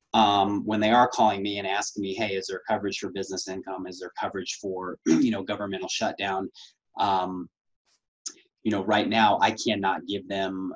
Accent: American